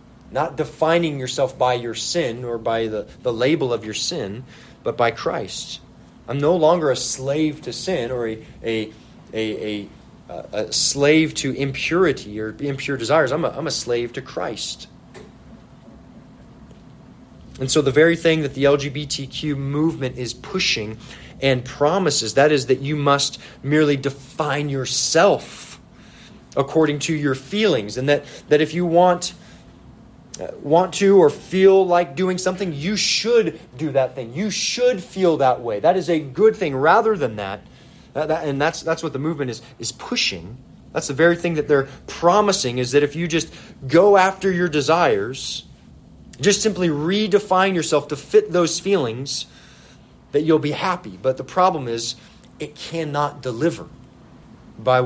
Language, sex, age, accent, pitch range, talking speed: English, male, 30-49, American, 130-170 Hz, 160 wpm